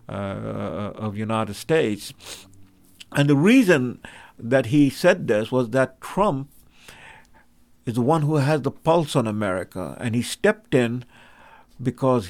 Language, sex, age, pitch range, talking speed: English, male, 50-69, 115-145 Hz, 135 wpm